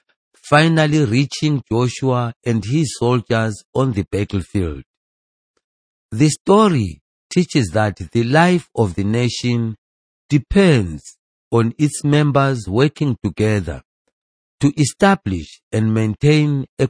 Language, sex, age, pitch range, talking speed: English, male, 50-69, 100-145 Hz, 105 wpm